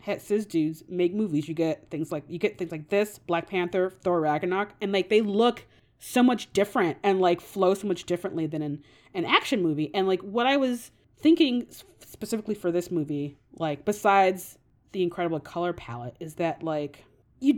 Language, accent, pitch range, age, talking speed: English, American, 160-215 Hz, 30-49, 190 wpm